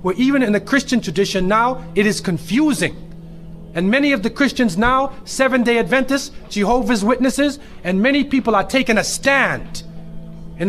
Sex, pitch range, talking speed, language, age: male, 185-240 Hz, 155 wpm, English, 40-59